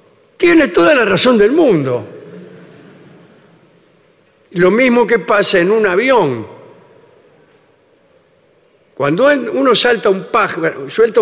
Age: 50-69